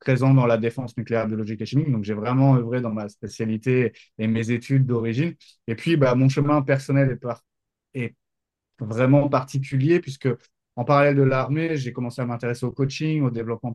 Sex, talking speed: male, 190 wpm